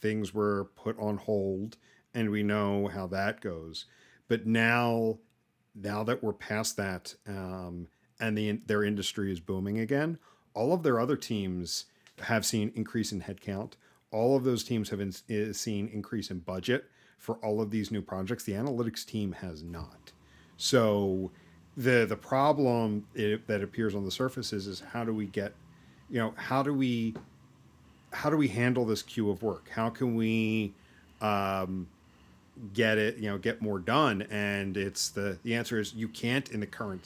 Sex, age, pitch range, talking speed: male, 40-59, 100-115 Hz, 175 wpm